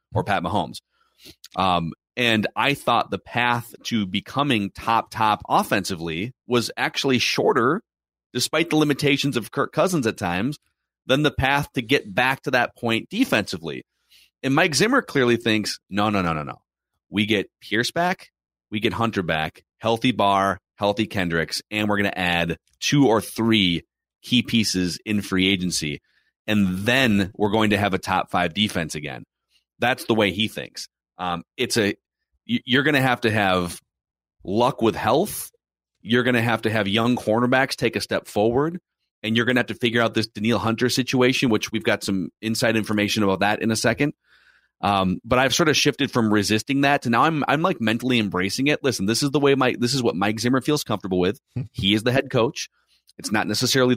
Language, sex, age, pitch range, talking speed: English, male, 30-49, 100-130 Hz, 190 wpm